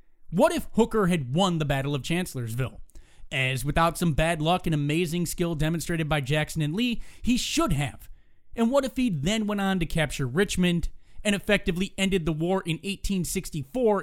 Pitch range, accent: 150-205 Hz, American